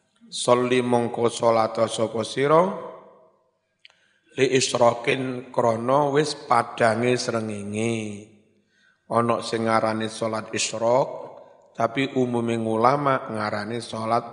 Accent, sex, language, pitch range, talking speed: native, male, Indonesian, 115-150 Hz, 80 wpm